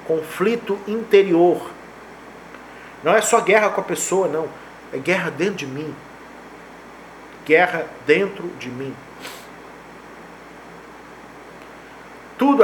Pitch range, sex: 155-200 Hz, male